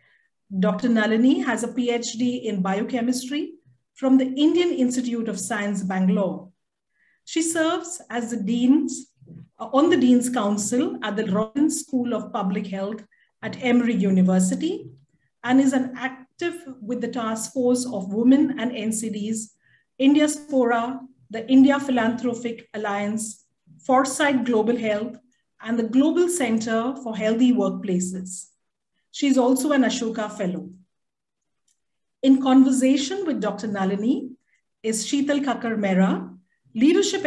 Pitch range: 210-265 Hz